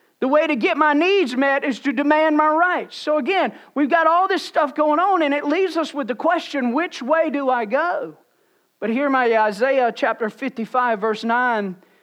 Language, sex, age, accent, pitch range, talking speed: English, male, 40-59, American, 230-280 Hz, 205 wpm